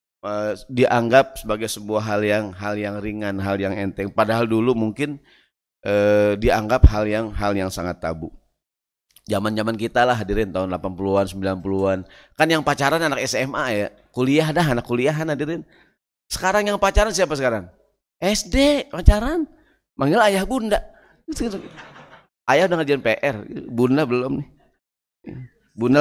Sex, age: male, 30-49